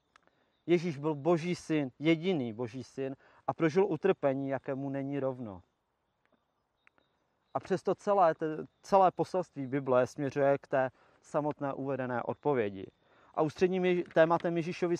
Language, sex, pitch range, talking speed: Czech, male, 130-160 Hz, 115 wpm